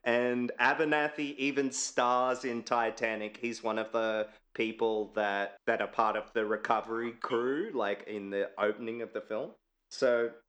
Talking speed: 155 wpm